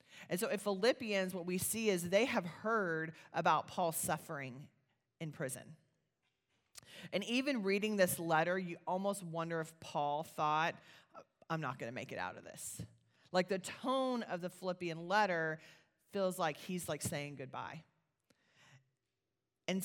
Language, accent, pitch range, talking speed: English, American, 155-190 Hz, 150 wpm